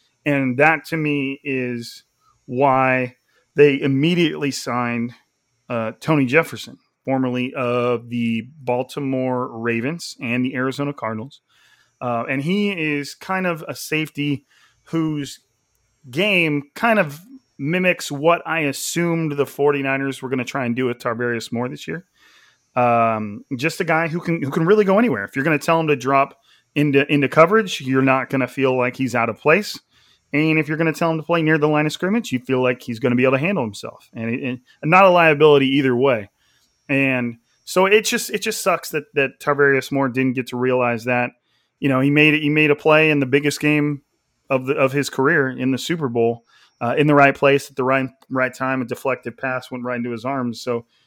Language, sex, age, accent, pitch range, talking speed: English, male, 30-49, American, 125-150 Hz, 200 wpm